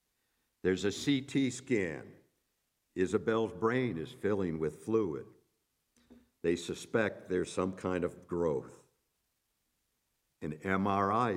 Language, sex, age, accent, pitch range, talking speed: English, male, 60-79, American, 95-120 Hz, 100 wpm